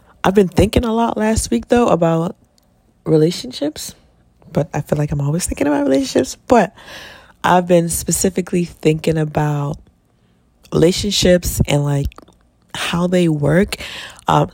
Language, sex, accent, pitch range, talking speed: English, female, American, 145-180 Hz, 130 wpm